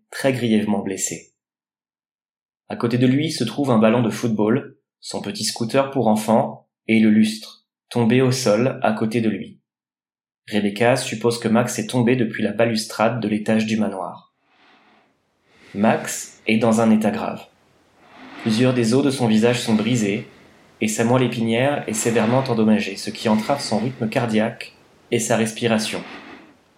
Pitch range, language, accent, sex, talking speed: 110-125 Hz, French, French, male, 160 wpm